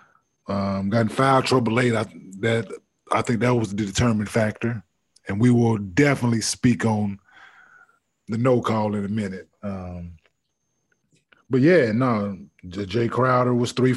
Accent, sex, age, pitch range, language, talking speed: American, male, 20-39, 105-125 Hz, English, 150 wpm